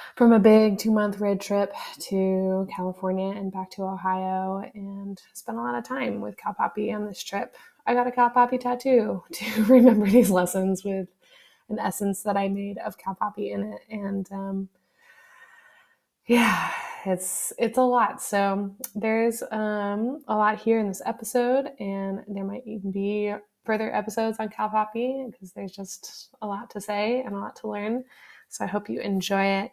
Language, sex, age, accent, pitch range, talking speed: English, female, 20-39, American, 195-225 Hz, 180 wpm